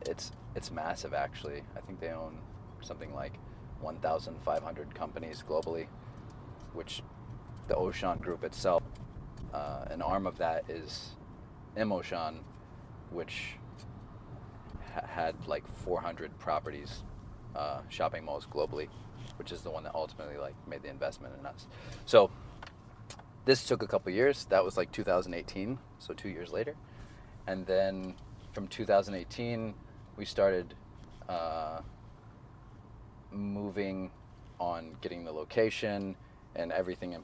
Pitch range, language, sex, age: 95-115 Hz, English, male, 30-49